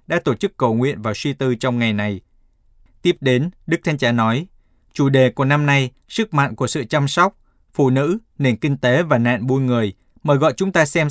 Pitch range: 120-155 Hz